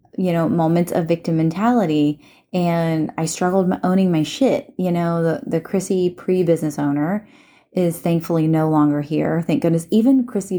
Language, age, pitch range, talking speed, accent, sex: English, 30-49, 155-200 Hz, 160 wpm, American, female